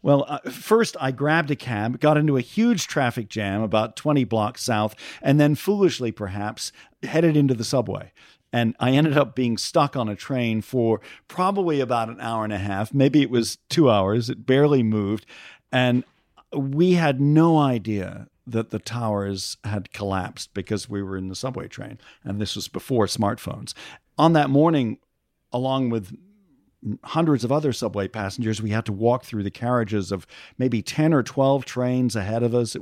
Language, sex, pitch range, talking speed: English, male, 110-145 Hz, 180 wpm